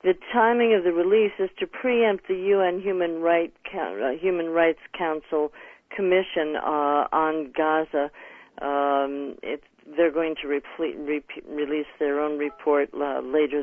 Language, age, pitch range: English, 50-69, 150-190 Hz